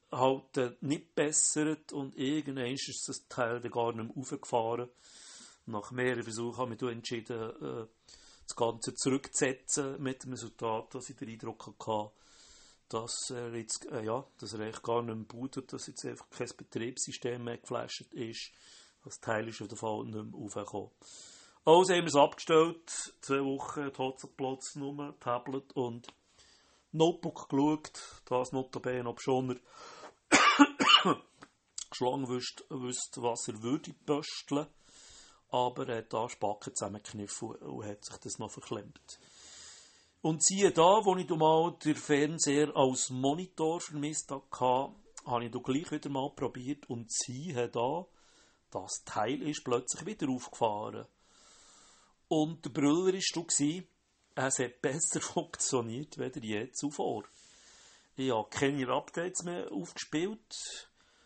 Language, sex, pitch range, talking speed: German, male, 120-150 Hz, 140 wpm